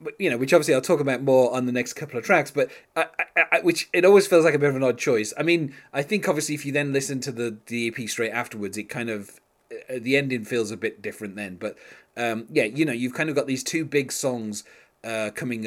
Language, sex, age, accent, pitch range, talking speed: English, male, 30-49, British, 105-135 Hz, 265 wpm